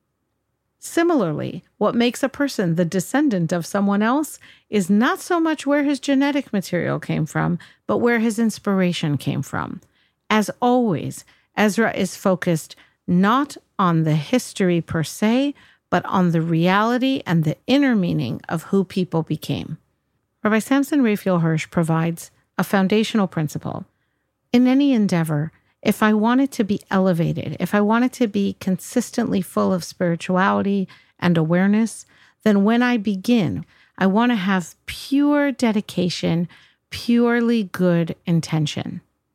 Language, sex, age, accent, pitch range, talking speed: English, female, 50-69, American, 170-235 Hz, 140 wpm